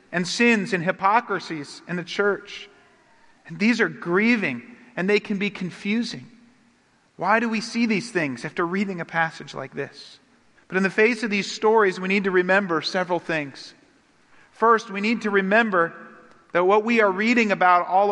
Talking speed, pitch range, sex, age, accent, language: 170 wpm, 170-220 Hz, male, 40-59, American, English